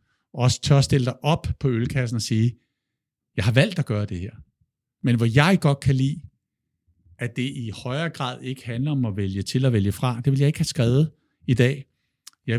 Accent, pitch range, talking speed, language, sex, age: native, 115-140 Hz, 220 wpm, Danish, male, 60-79